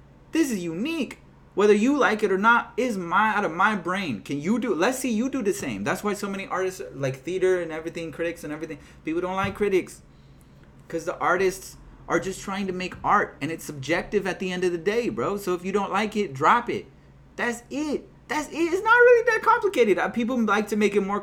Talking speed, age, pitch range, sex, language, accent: 230 wpm, 30-49, 175-240 Hz, male, English, American